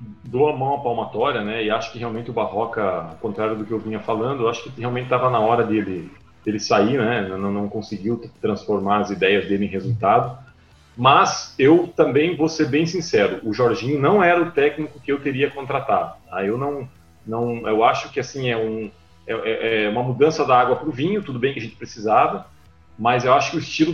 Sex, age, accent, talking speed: male, 40-59, Brazilian, 220 wpm